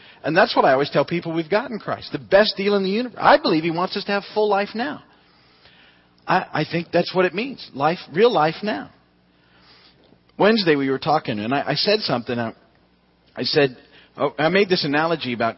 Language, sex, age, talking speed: English, male, 40-59, 210 wpm